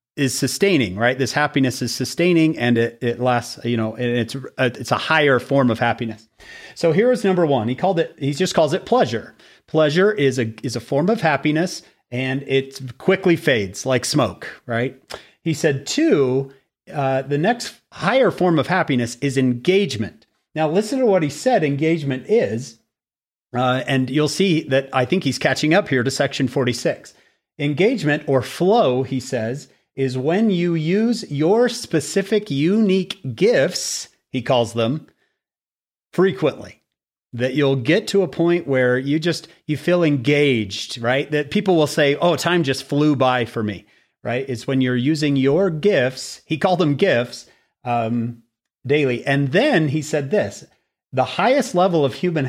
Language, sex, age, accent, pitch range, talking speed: English, male, 40-59, American, 125-170 Hz, 170 wpm